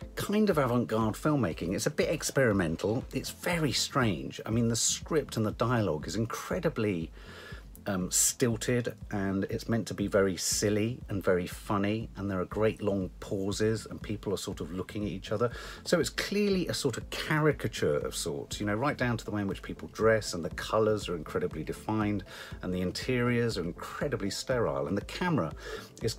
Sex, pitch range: male, 95-125 Hz